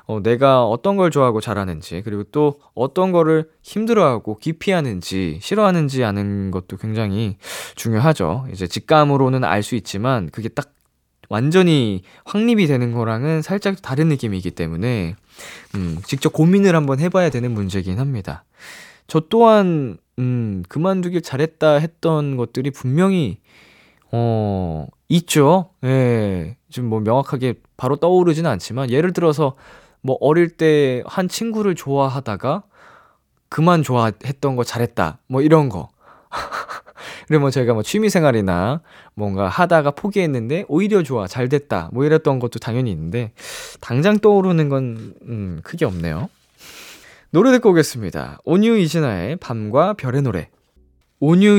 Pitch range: 110-160 Hz